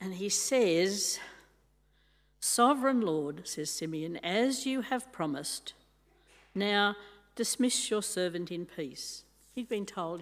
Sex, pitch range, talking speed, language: female, 160-220 Hz, 115 wpm, English